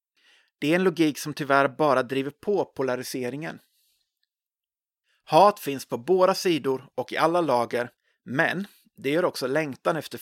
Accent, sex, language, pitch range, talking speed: native, male, Swedish, 140-190 Hz, 145 wpm